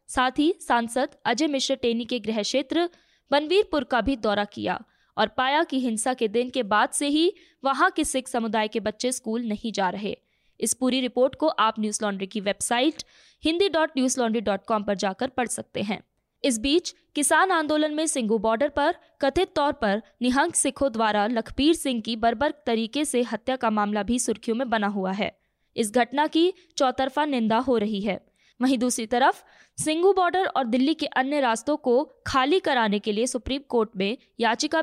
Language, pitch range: Hindi, 225-300 Hz